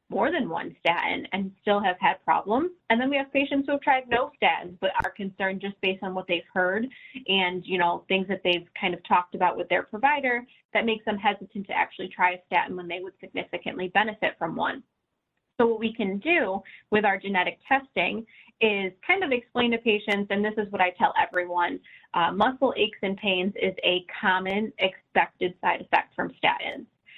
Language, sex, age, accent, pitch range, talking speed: English, female, 20-39, American, 185-230 Hz, 205 wpm